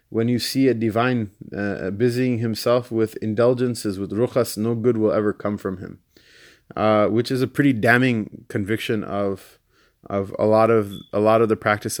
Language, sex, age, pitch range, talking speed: English, male, 20-39, 105-120 Hz, 180 wpm